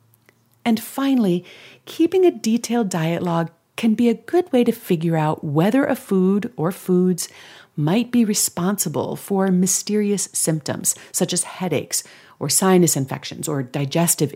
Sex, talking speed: female, 140 wpm